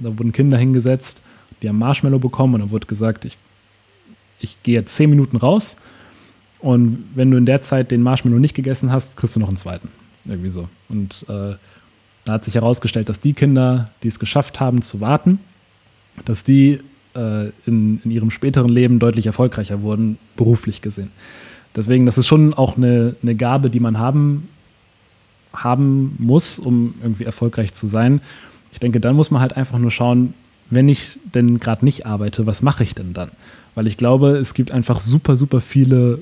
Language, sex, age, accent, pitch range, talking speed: German, male, 30-49, German, 110-130 Hz, 185 wpm